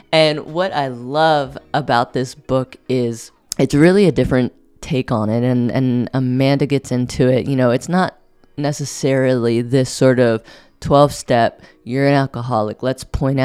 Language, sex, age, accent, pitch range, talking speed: English, female, 20-39, American, 120-145 Hz, 160 wpm